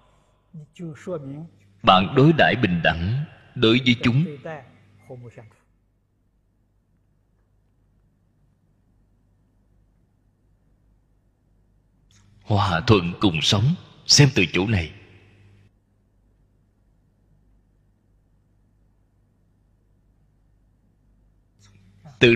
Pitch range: 100-135 Hz